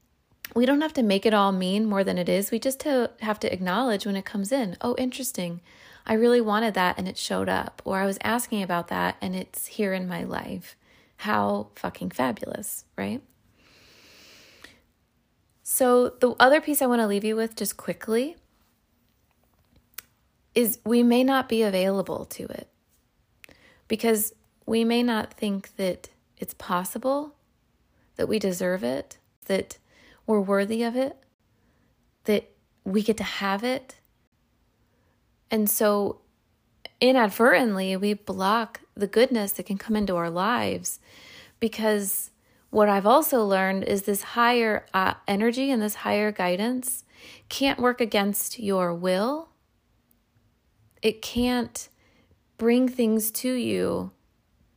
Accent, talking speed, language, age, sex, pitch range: American, 140 wpm, English, 20-39, female, 195-240 Hz